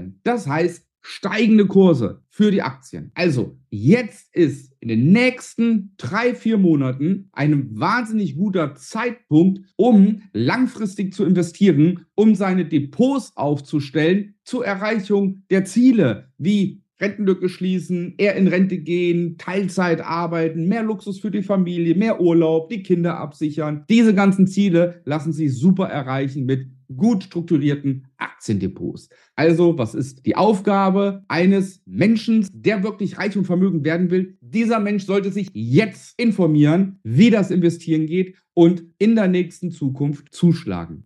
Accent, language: German, German